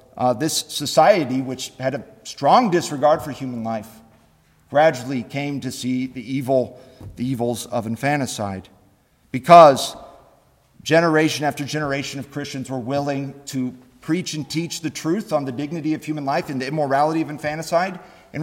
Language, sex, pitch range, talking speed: English, male, 130-160 Hz, 150 wpm